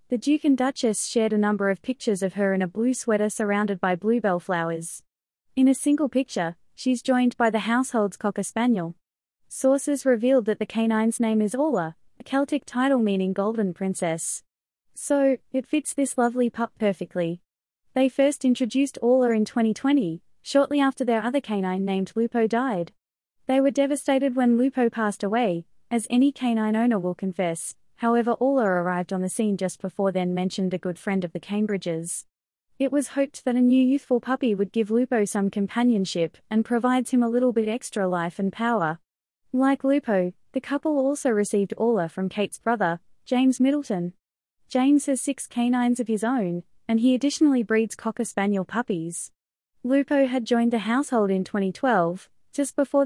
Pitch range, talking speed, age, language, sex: 195-260 Hz, 170 wpm, 20-39, English, female